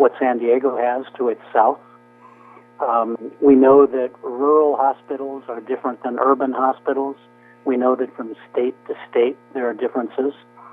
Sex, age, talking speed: male, 60-79, 155 wpm